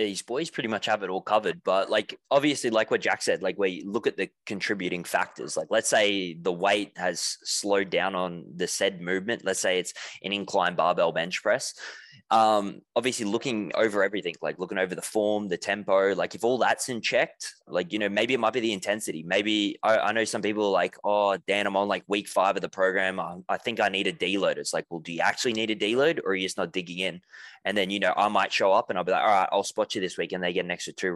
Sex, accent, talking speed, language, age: male, Australian, 260 wpm, English, 20-39